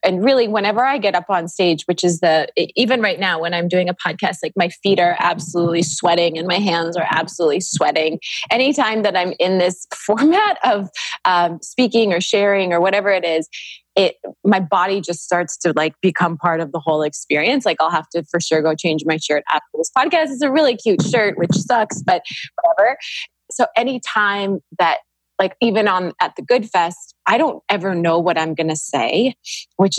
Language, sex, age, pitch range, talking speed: English, female, 20-39, 165-215 Hz, 200 wpm